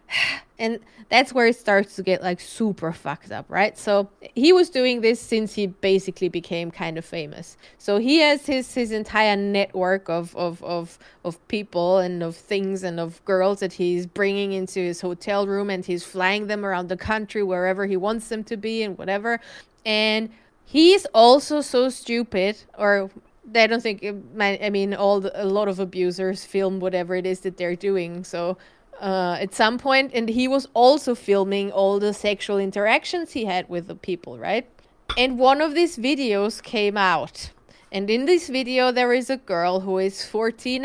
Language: English